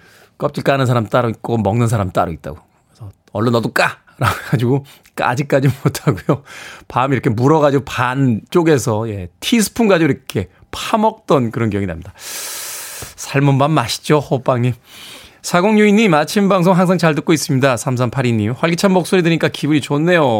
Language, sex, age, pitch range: Korean, male, 20-39, 120-175 Hz